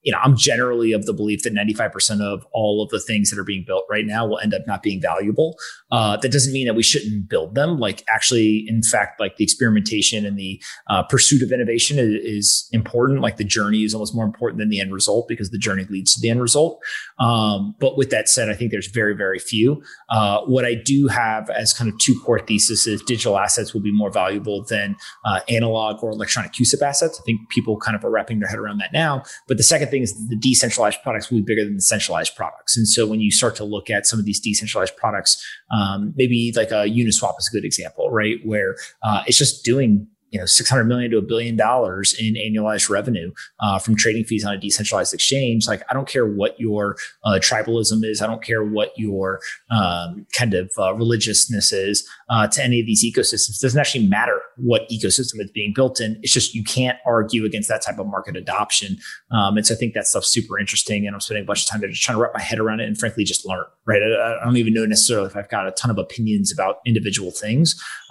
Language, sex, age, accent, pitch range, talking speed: English, male, 30-49, American, 105-115 Hz, 240 wpm